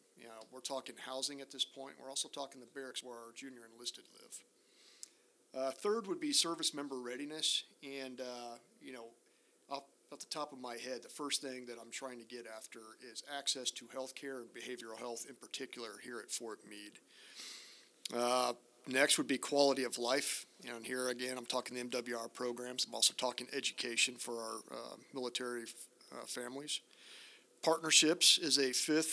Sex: male